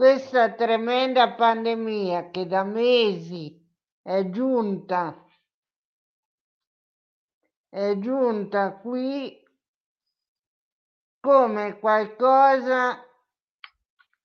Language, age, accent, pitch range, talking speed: Italian, 50-69, native, 220-270 Hz, 55 wpm